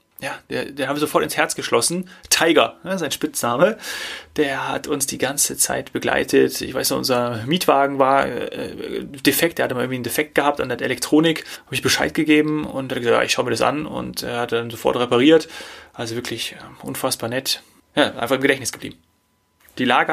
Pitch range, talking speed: 130-165 Hz, 200 wpm